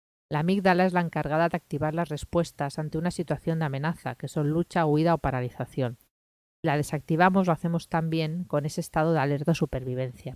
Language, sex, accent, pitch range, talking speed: Spanish, female, Spanish, 140-170 Hz, 180 wpm